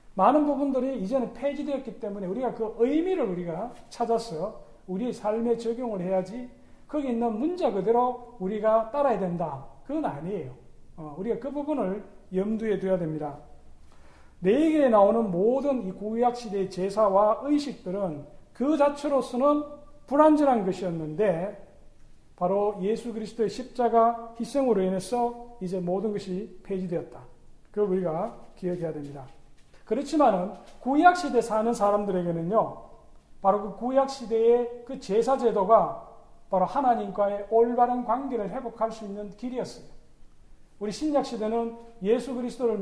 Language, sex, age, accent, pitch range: Korean, male, 40-59, native, 190-245 Hz